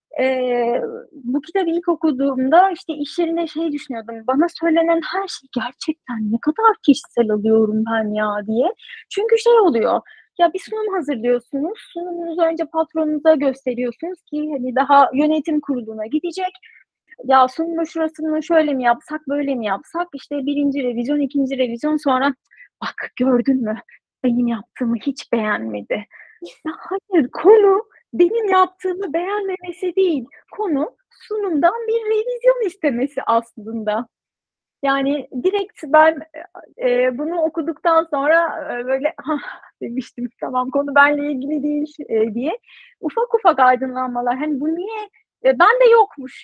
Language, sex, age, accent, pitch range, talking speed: Turkish, female, 30-49, native, 260-345 Hz, 130 wpm